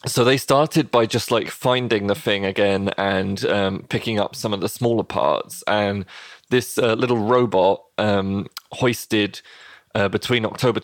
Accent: British